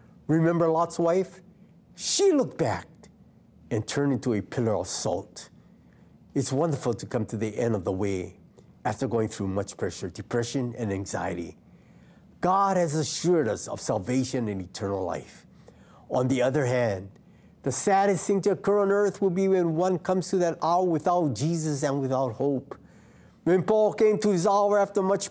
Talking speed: 170 wpm